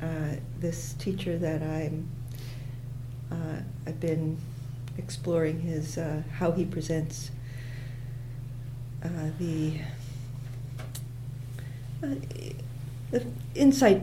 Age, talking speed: 60-79, 75 wpm